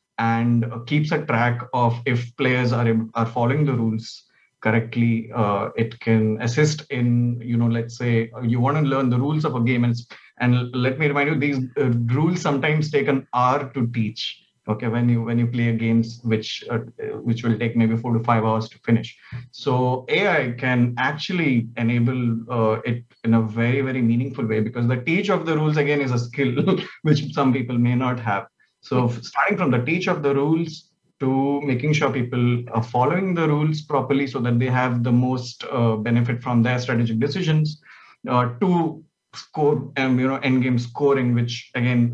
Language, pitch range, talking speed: English, 115-140 Hz, 190 wpm